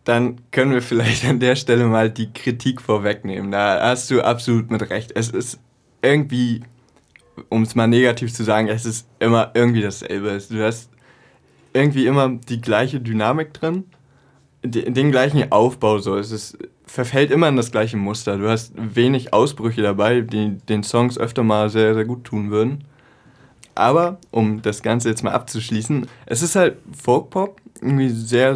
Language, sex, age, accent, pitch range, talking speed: German, male, 20-39, German, 110-130 Hz, 165 wpm